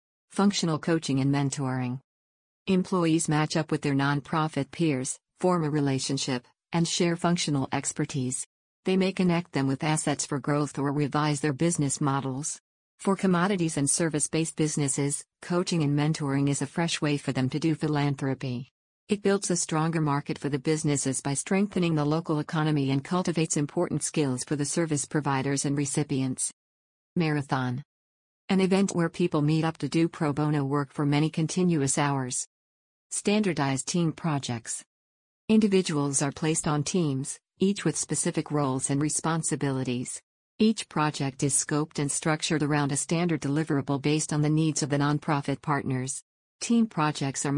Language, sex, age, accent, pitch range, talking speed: English, female, 50-69, American, 140-165 Hz, 155 wpm